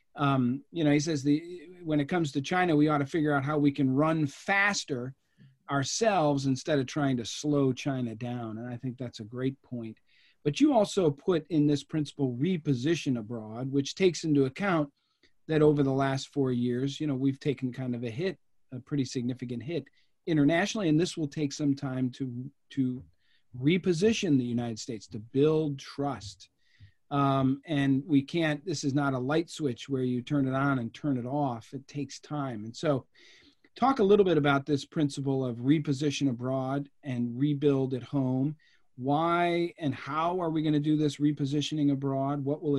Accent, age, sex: American, 40-59, male